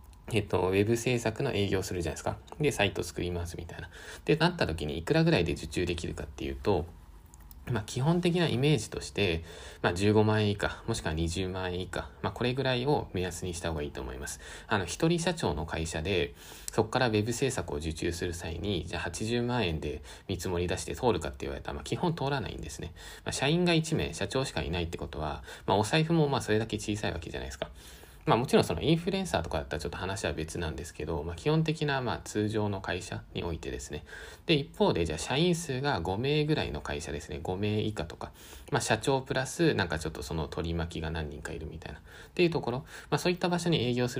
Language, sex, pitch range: Japanese, male, 80-120 Hz